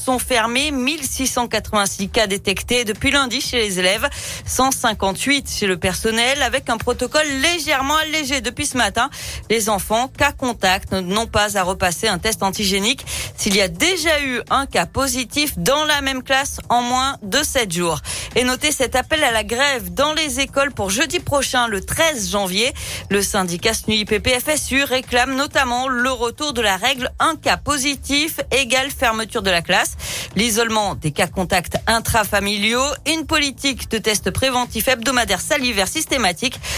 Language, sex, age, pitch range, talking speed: French, female, 40-59, 210-275 Hz, 160 wpm